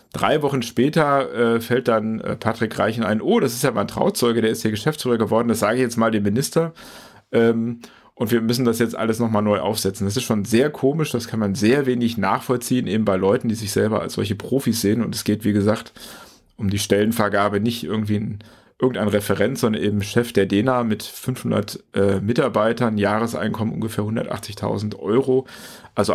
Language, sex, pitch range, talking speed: German, male, 105-120 Hz, 195 wpm